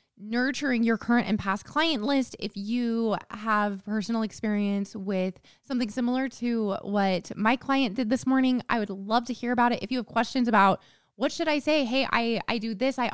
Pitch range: 210-270 Hz